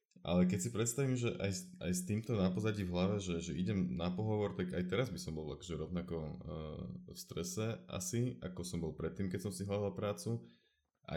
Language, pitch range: Slovak, 85-95 Hz